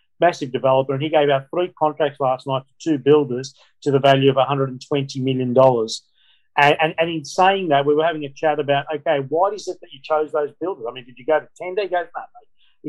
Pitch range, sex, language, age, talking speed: 130-155 Hz, male, English, 40-59, 240 wpm